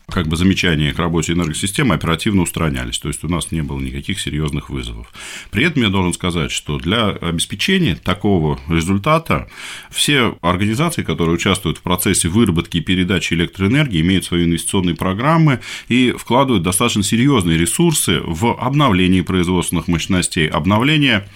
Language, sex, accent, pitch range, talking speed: Russian, male, native, 85-105 Hz, 145 wpm